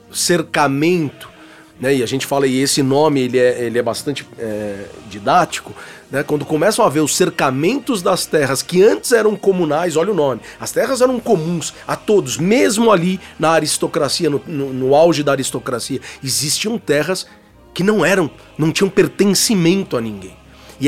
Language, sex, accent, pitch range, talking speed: Portuguese, male, Brazilian, 135-195 Hz, 170 wpm